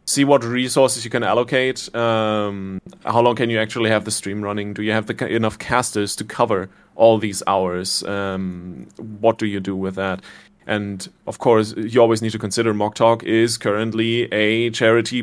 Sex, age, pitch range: male, 30-49, 105-120 Hz